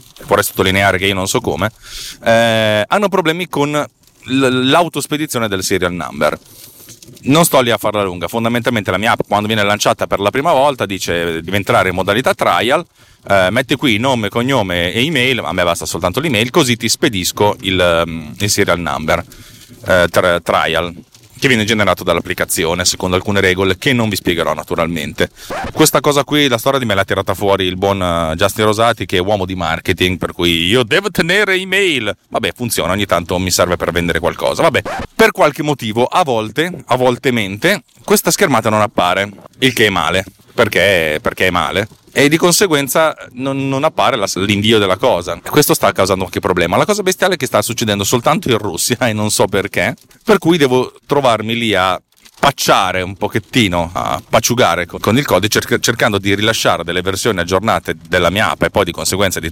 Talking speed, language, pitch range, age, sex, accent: 190 wpm, Italian, 95-130 Hz, 30-49, male, native